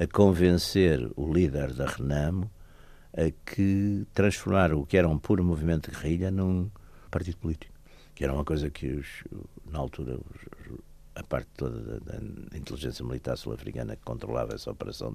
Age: 60-79